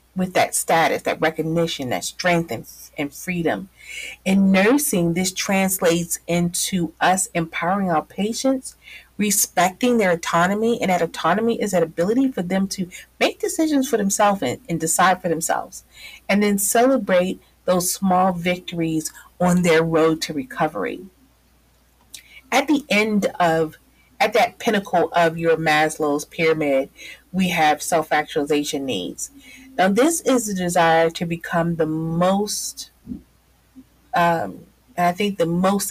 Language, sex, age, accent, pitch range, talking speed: English, female, 40-59, American, 165-205 Hz, 135 wpm